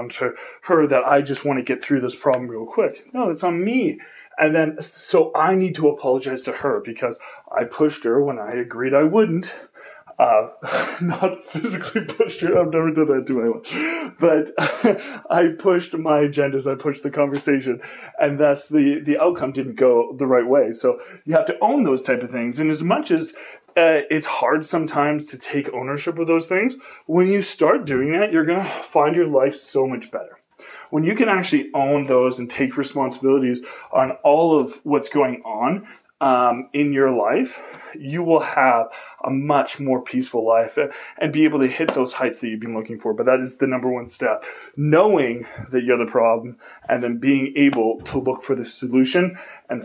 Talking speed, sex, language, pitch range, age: 195 wpm, male, English, 130-165 Hz, 30-49